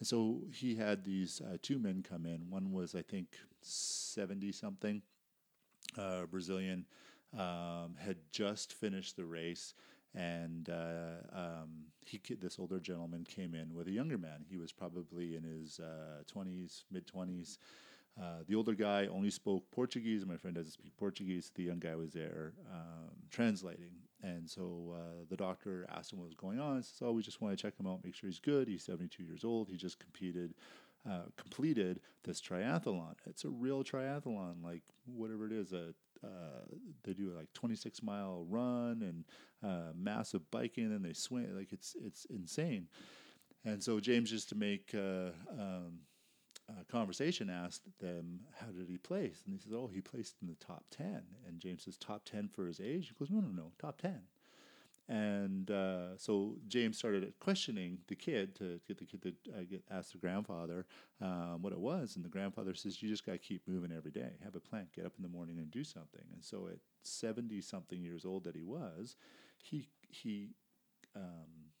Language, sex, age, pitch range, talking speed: English, male, 40-59, 85-110 Hz, 190 wpm